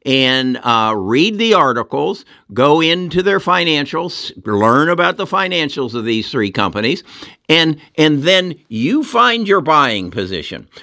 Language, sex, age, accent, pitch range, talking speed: English, male, 60-79, American, 115-175 Hz, 140 wpm